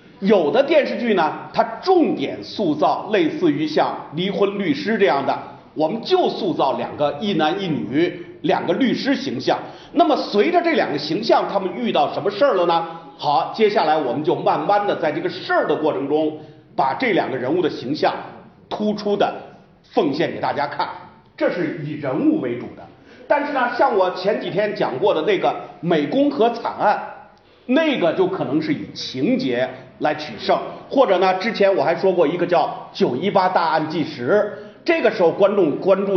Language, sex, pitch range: Chinese, male, 175-250 Hz